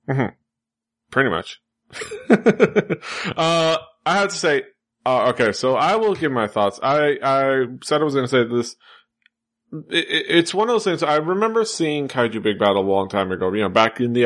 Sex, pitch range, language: male, 105-135 Hz, English